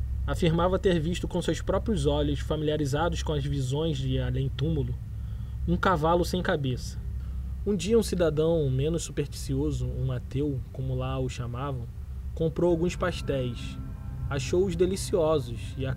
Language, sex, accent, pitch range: Portuguese, male, Brazilian, 110-160 Hz